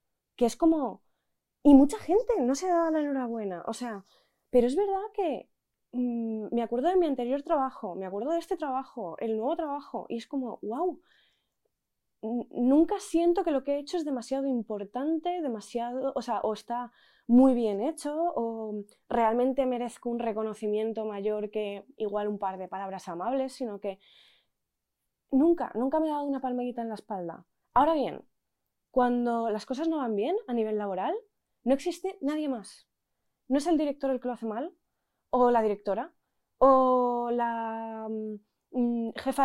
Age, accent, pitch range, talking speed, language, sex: 20-39, Spanish, 220-285 Hz, 170 wpm, Spanish, female